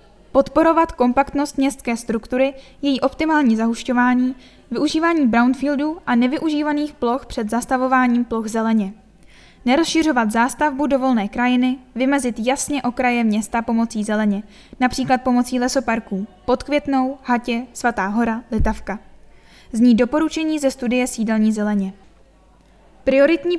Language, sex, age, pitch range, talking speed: Czech, female, 10-29, 230-280 Hz, 105 wpm